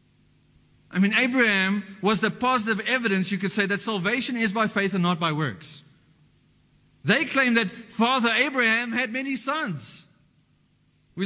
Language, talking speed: English, 150 wpm